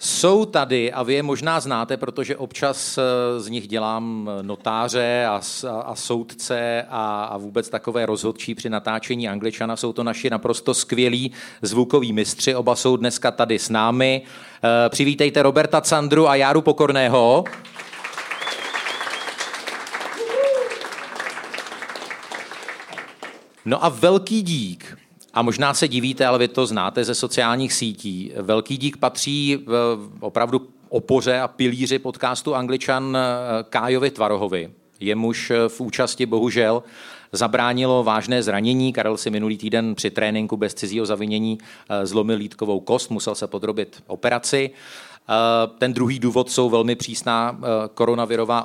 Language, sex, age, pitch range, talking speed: Czech, male, 40-59, 110-130 Hz, 125 wpm